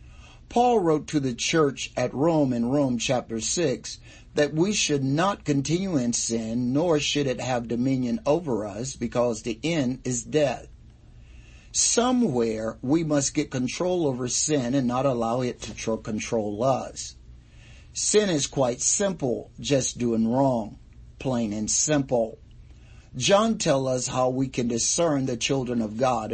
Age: 50-69